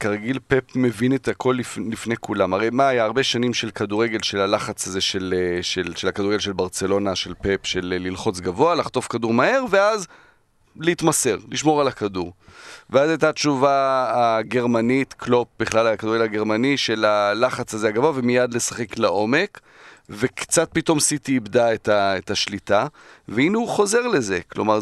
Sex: male